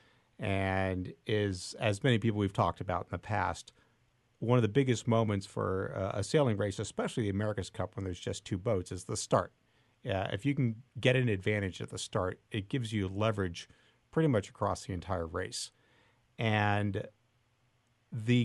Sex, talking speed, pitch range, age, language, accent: male, 175 wpm, 100-125 Hz, 50-69, English, American